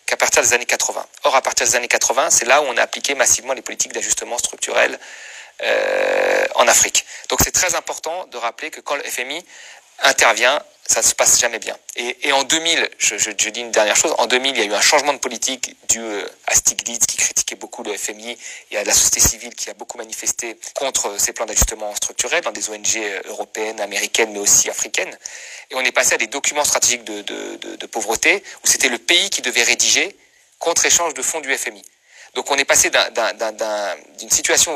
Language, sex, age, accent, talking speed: French, male, 30-49, French, 220 wpm